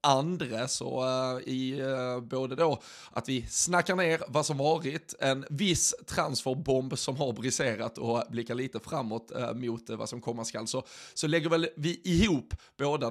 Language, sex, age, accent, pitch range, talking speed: Swedish, male, 20-39, native, 120-150 Hz, 155 wpm